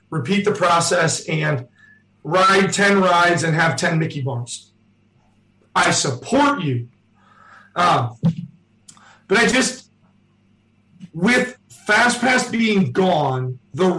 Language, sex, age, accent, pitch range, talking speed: English, male, 40-59, American, 130-190 Hz, 105 wpm